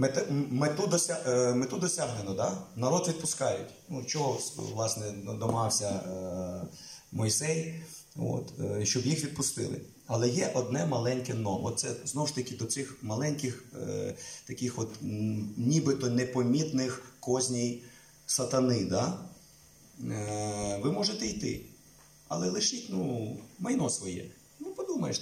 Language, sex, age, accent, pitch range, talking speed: Russian, male, 30-49, native, 115-145 Hz, 100 wpm